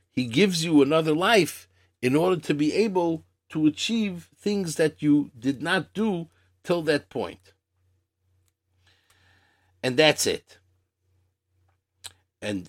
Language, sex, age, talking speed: English, male, 50-69, 120 wpm